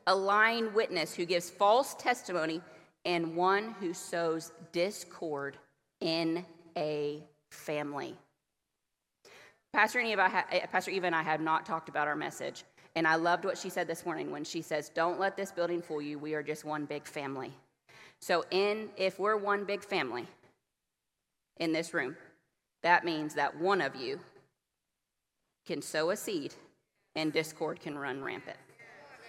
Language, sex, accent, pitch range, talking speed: English, female, American, 160-200 Hz, 155 wpm